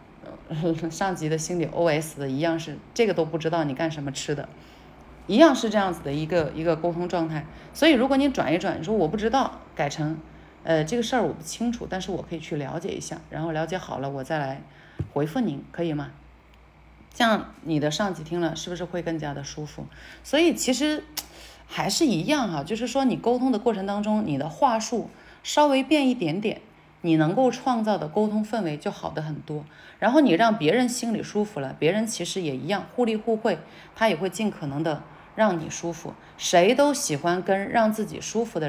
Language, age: Chinese, 30-49